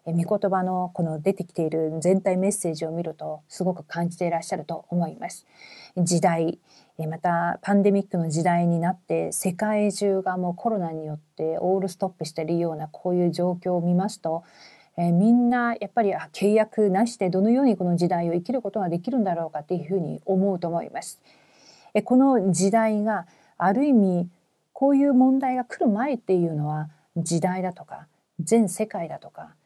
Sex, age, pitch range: female, 40-59, 170-215 Hz